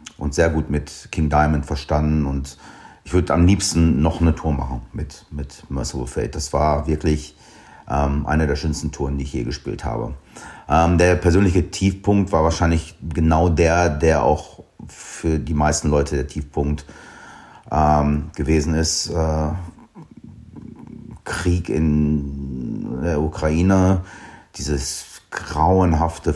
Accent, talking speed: German, 135 wpm